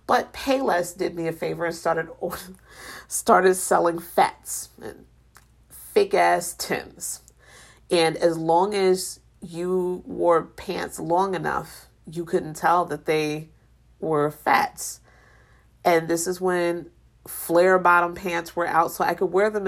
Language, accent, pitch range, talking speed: English, American, 165-200 Hz, 135 wpm